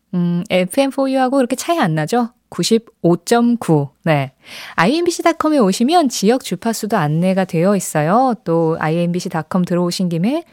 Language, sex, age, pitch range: Korean, female, 20-39, 170-245 Hz